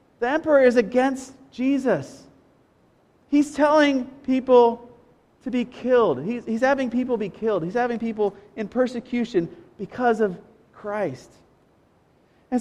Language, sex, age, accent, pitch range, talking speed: English, male, 40-59, American, 195-245 Hz, 125 wpm